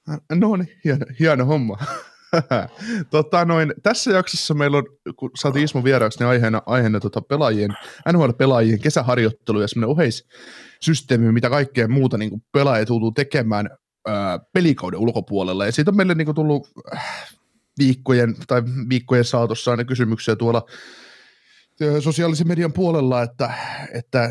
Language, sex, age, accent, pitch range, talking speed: Finnish, male, 30-49, native, 110-135 Hz, 125 wpm